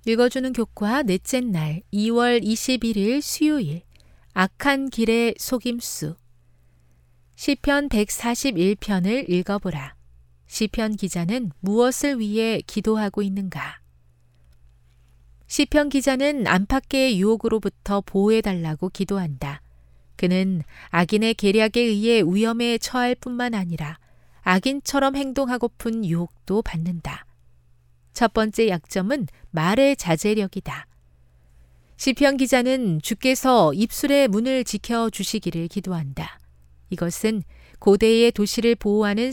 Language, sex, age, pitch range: Korean, female, 40-59, 165-240 Hz